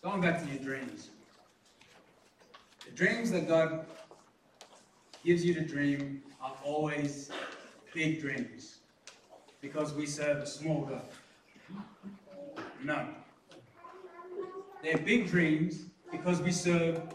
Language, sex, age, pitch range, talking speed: English, male, 30-49, 145-190 Hz, 105 wpm